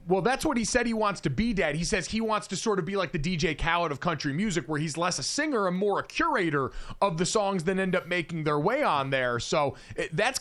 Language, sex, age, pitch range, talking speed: English, male, 30-49, 150-210 Hz, 270 wpm